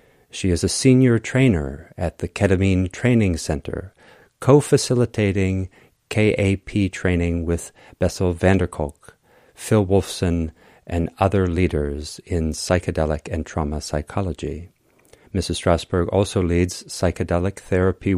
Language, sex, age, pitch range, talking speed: English, male, 50-69, 85-110 Hz, 110 wpm